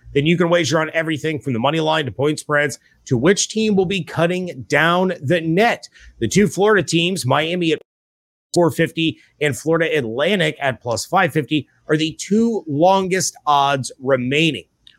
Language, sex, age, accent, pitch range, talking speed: English, male, 30-49, American, 125-170 Hz, 165 wpm